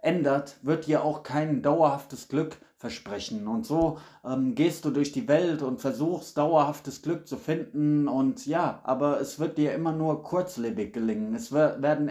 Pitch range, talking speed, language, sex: 135-155 Hz, 170 wpm, German, male